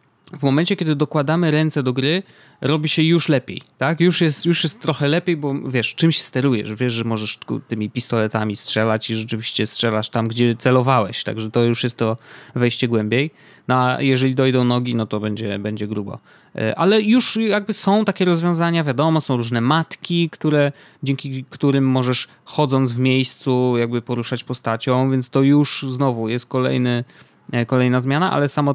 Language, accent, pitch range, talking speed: Polish, native, 120-160 Hz, 170 wpm